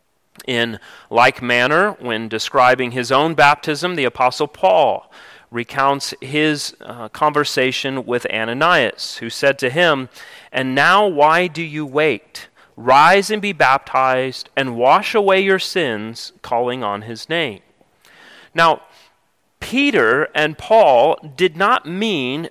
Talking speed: 125 wpm